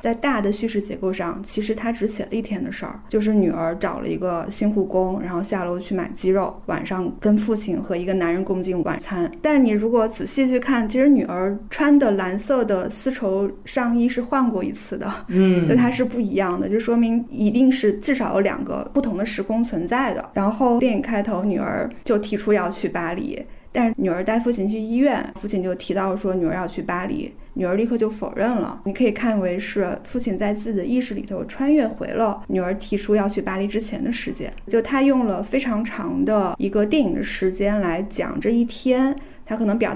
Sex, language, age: female, Chinese, 20-39